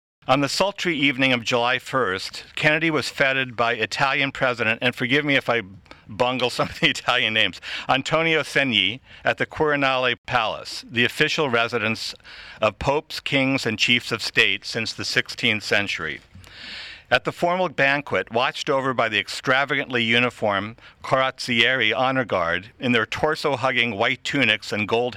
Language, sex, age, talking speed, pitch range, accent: English, male, 60-79, 155 wpm, 110-140 Hz, American